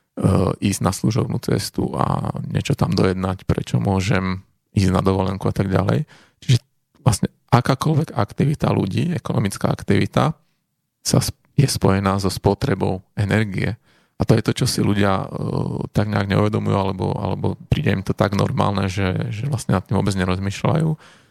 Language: Slovak